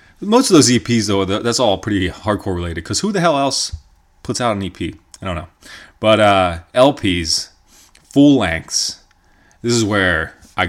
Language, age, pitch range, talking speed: English, 30-49, 95-125 Hz, 170 wpm